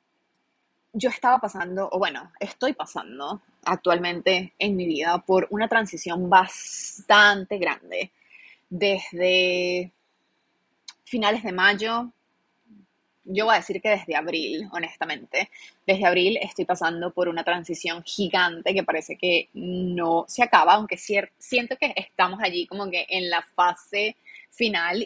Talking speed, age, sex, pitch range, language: 125 wpm, 20-39, female, 175-220 Hz, Spanish